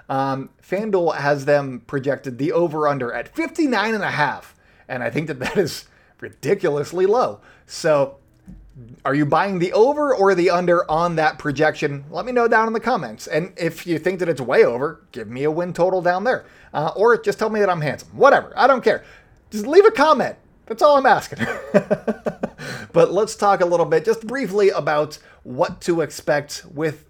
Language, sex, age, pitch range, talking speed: English, male, 20-39, 135-195 Hz, 195 wpm